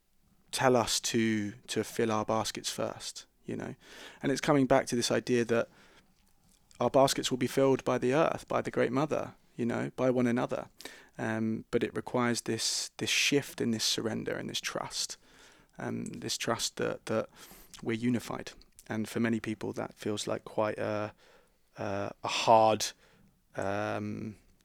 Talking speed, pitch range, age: 165 wpm, 110-125 Hz, 20-39